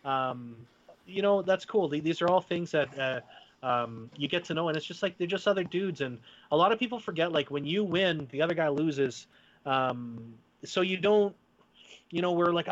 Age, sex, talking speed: 30-49, male, 215 wpm